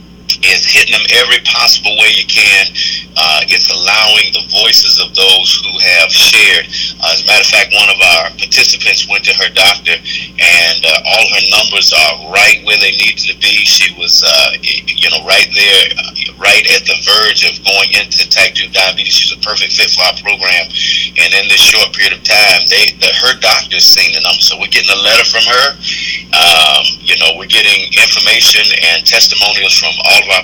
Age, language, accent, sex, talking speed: 50-69, English, American, male, 195 wpm